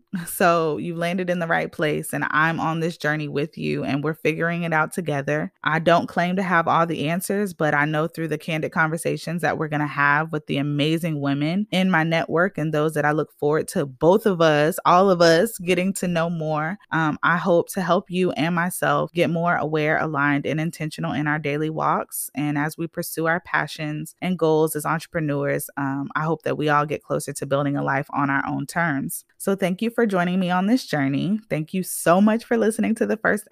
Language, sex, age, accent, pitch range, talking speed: English, female, 20-39, American, 150-175 Hz, 225 wpm